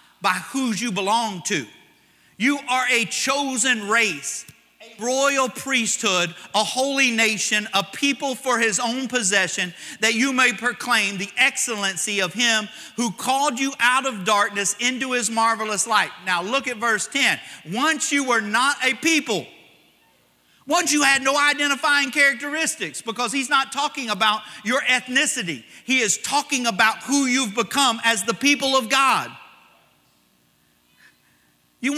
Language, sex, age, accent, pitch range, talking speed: English, male, 40-59, American, 210-280 Hz, 145 wpm